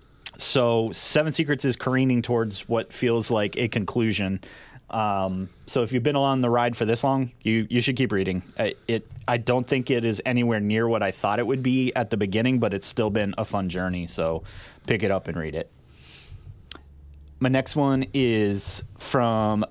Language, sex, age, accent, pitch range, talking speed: English, male, 30-49, American, 105-130 Hz, 195 wpm